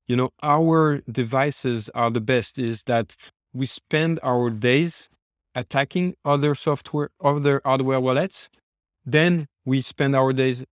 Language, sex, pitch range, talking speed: English, male, 115-140 Hz, 135 wpm